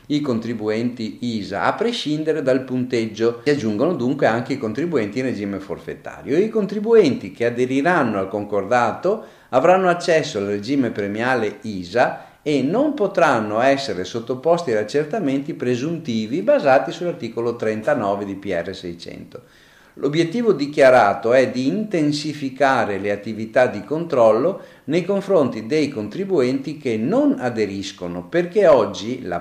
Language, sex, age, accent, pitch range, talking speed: Italian, male, 50-69, native, 110-165 Hz, 125 wpm